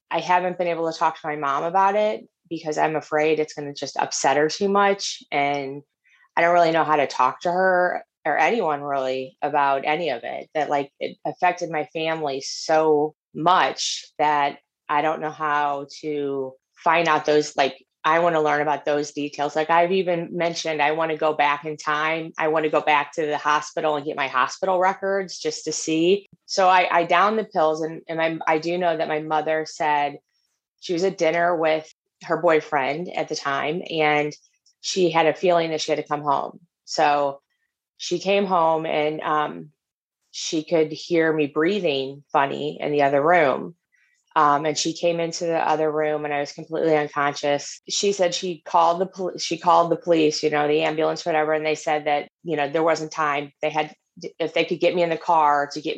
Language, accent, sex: English, American, female